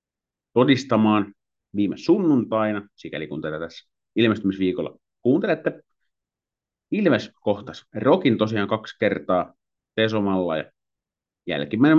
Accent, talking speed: native, 90 wpm